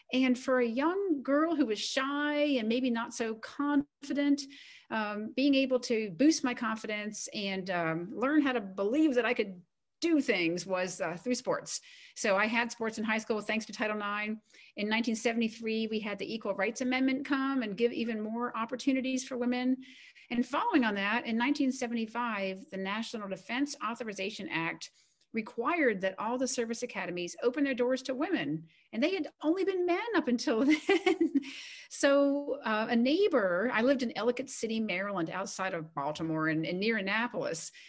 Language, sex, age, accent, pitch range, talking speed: English, female, 40-59, American, 195-265 Hz, 175 wpm